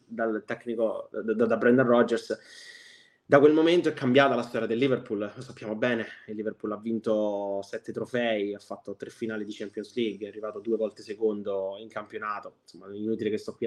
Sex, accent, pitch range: male, native, 105-120 Hz